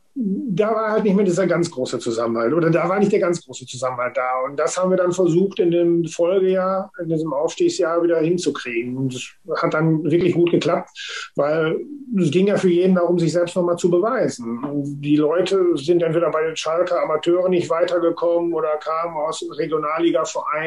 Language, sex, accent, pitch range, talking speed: German, male, German, 145-175 Hz, 190 wpm